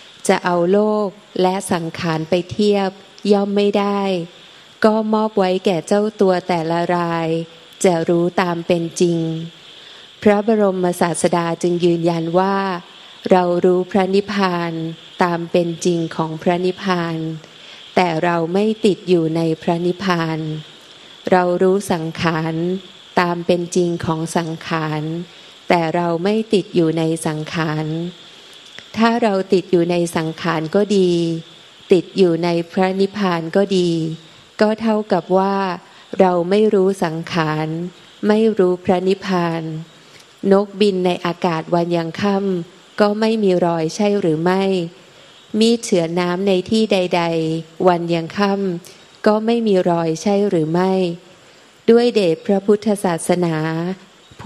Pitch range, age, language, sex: 170-195 Hz, 20-39, Thai, female